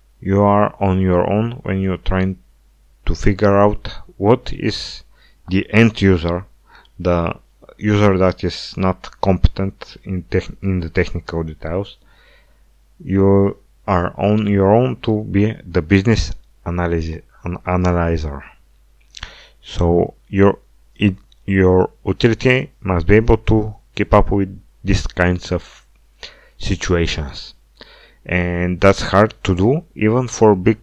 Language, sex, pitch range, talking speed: English, male, 85-105 Hz, 120 wpm